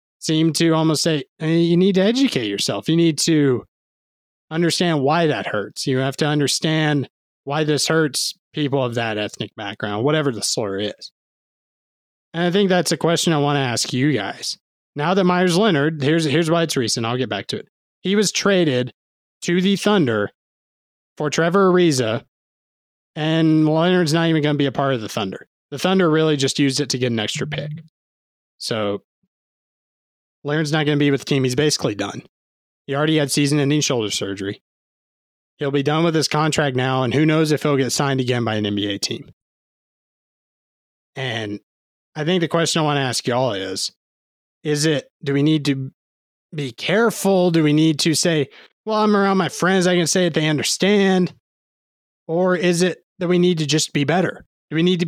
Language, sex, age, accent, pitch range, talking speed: English, male, 20-39, American, 130-170 Hz, 195 wpm